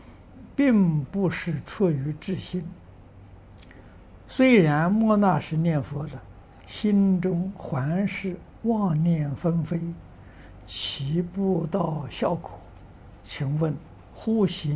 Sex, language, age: male, Chinese, 60-79